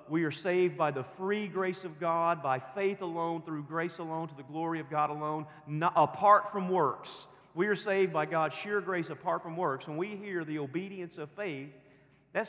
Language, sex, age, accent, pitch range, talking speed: English, male, 40-59, American, 155-210 Hz, 205 wpm